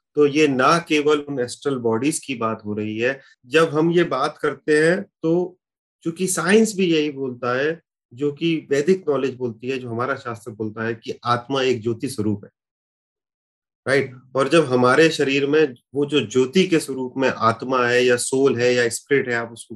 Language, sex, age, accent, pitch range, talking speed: Hindi, male, 30-49, native, 120-160 Hz, 200 wpm